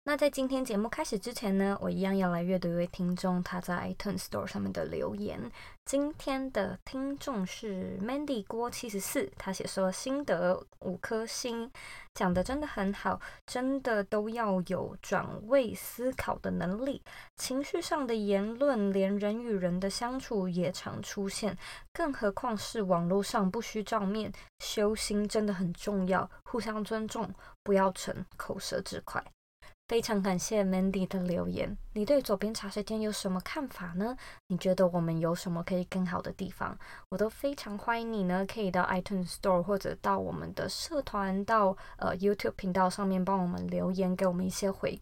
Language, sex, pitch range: Chinese, female, 185-225 Hz